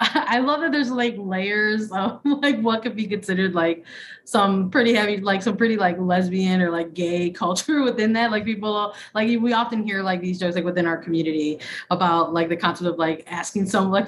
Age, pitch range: 20-39, 175-200 Hz